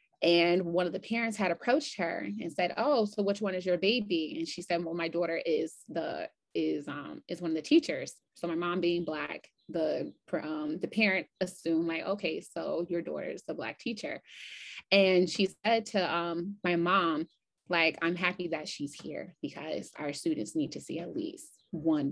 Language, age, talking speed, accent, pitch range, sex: English, 20-39, 200 wpm, American, 165-195 Hz, female